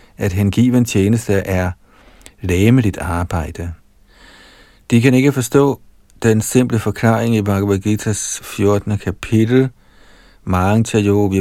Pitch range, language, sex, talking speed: 95-115 Hz, Danish, male, 105 wpm